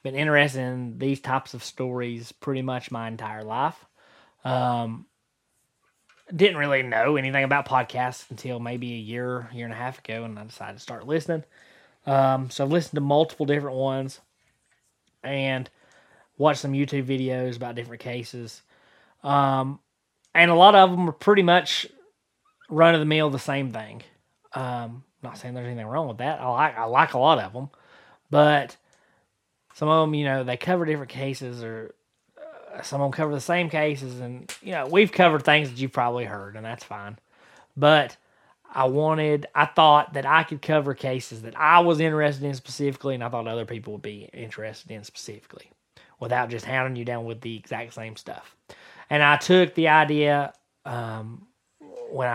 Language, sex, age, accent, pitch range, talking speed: English, male, 20-39, American, 120-150 Hz, 180 wpm